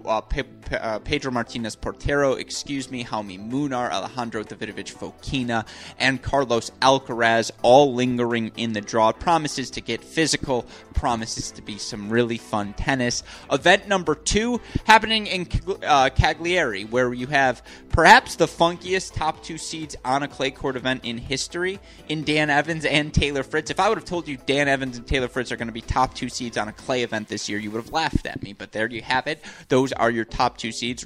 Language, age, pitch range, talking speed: English, 20-39, 110-135 Hz, 190 wpm